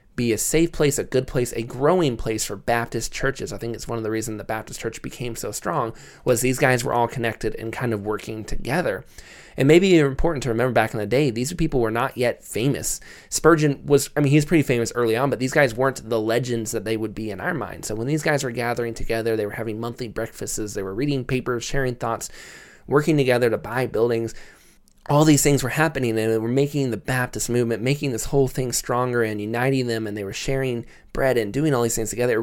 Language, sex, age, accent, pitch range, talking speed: English, male, 20-39, American, 110-135 Hz, 240 wpm